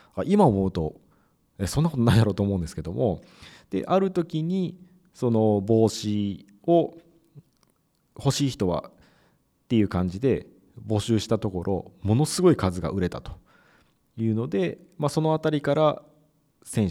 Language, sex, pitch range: Japanese, male, 95-145 Hz